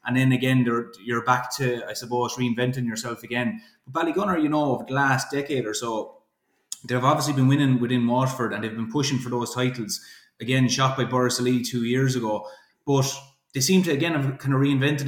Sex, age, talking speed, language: male, 20-39, 210 wpm, English